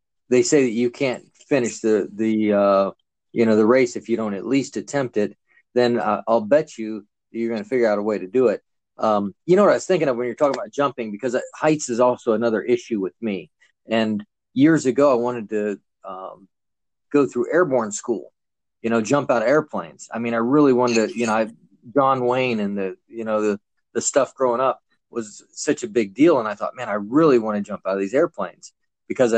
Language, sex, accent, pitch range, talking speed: English, male, American, 105-130 Hz, 230 wpm